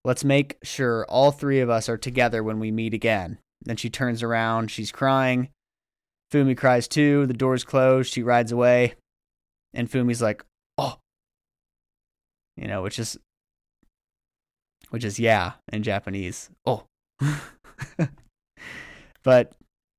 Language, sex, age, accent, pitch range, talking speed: English, male, 20-39, American, 115-140 Hz, 130 wpm